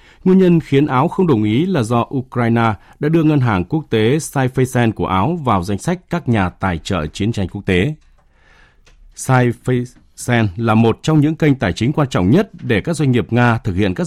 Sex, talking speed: male, 210 wpm